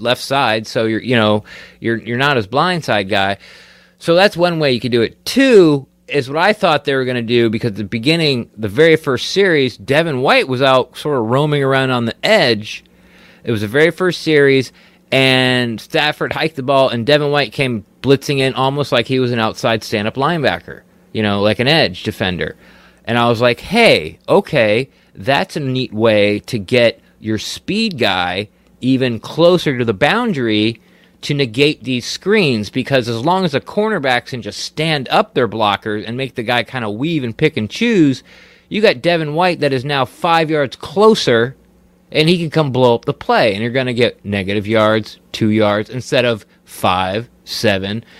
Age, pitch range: 30-49, 110-150 Hz